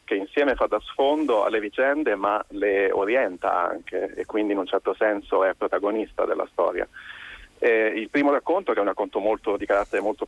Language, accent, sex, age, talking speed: Italian, native, male, 40-59, 195 wpm